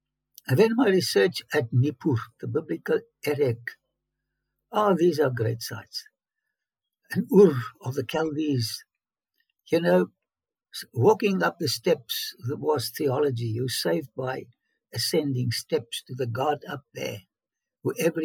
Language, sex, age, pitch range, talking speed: English, male, 60-79, 130-200 Hz, 130 wpm